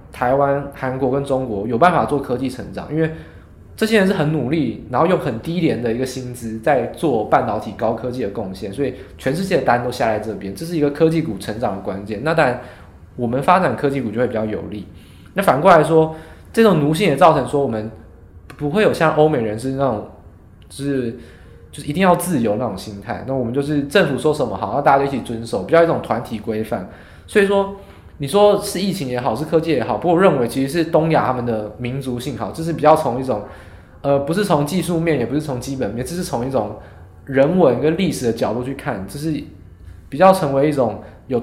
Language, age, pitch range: Chinese, 20-39, 110-155 Hz